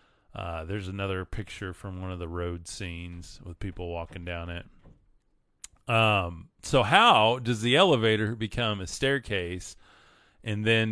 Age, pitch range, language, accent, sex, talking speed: 30-49, 95-120 Hz, English, American, male, 145 wpm